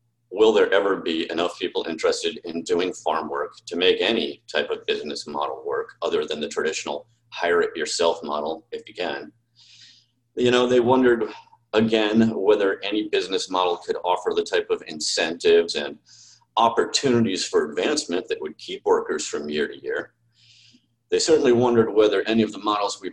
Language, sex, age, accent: English, male, 40-59, American